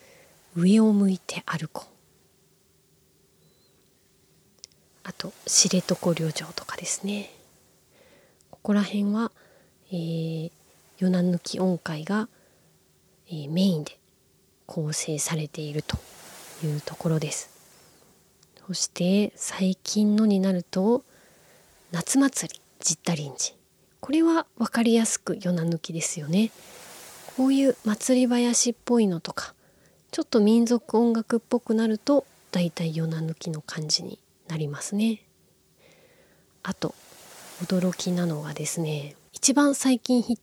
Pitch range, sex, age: 170-230 Hz, female, 30-49